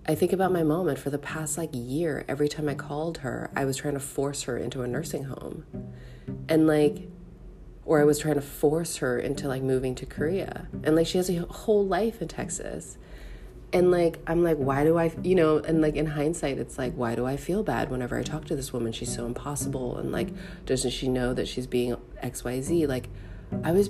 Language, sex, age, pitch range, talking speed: English, female, 30-49, 125-165 Hz, 225 wpm